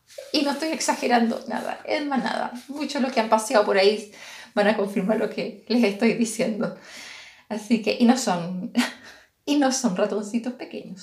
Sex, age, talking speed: female, 20-39, 175 wpm